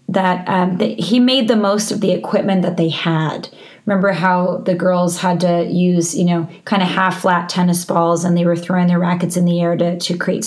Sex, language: female, English